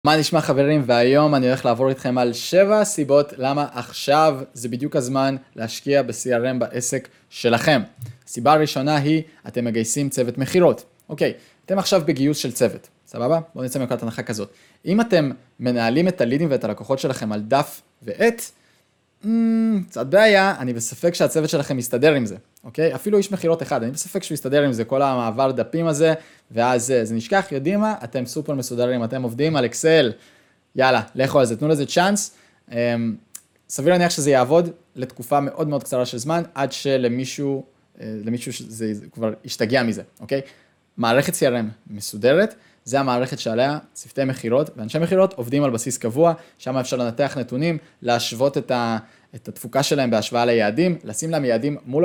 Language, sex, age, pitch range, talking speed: Hebrew, male, 20-39, 120-155 Hz, 160 wpm